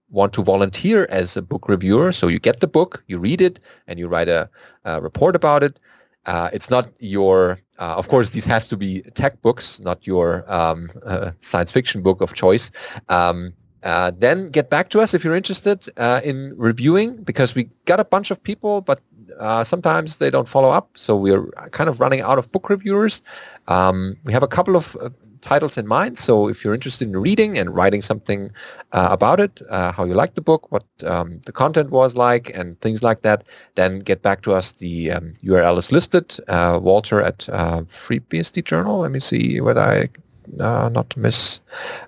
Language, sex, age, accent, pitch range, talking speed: English, male, 30-49, German, 95-145 Hz, 205 wpm